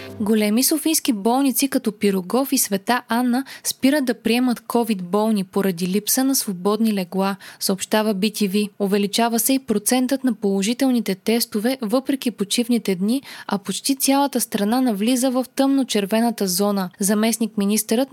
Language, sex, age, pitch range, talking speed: Bulgarian, female, 20-39, 200-255 Hz, 130 wpm